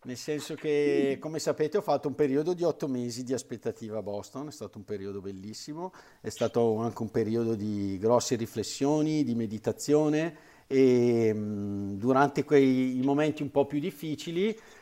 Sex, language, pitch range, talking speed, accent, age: male, Italian, 115-150 Hz, 160 wpm, native, 50-69